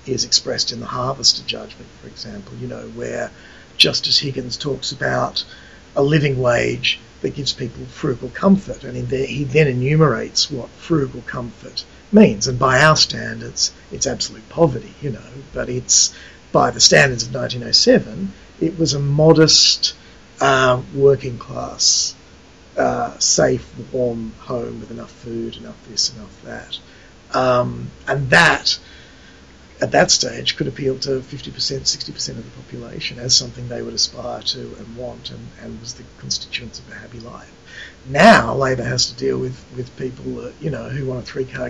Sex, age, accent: male, 50-69, Australian